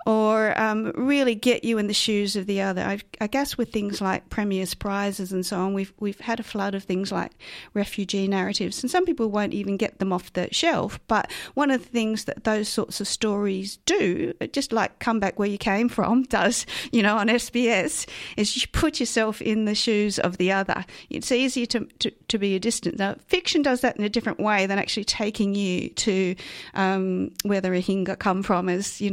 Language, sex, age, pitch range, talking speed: English, female, 40-59, 190-220 Hz, 215 wpm